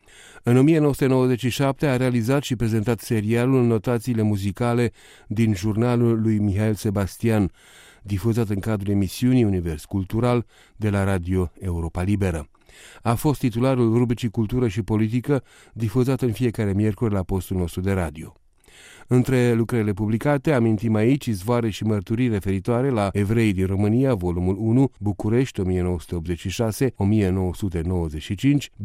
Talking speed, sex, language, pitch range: 125 wpm, male, Romanian, 95-120 Hz